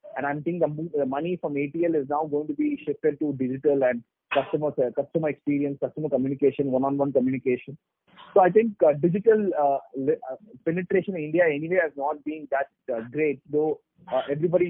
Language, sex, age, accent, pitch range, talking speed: English, male, 30-49, Indian, 140-175 Hz, 150 wpm